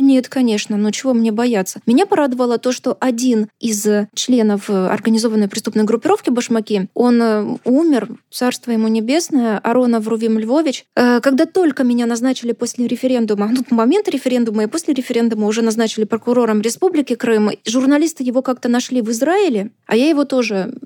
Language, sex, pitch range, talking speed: Russian, female, 225-275 Hz, 150 wpm